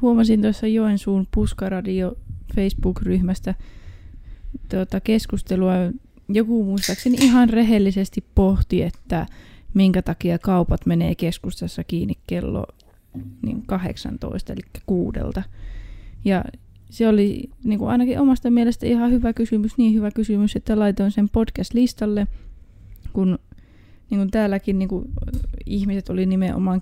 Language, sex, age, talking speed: Finnish, female, 20-39, 95 wpm